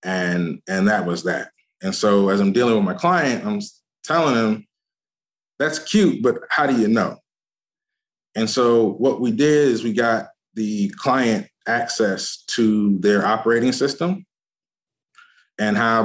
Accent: American